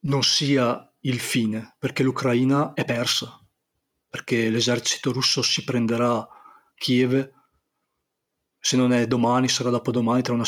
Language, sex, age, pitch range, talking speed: Italian, male, 40-59, 120-135 Hz, 125 wpm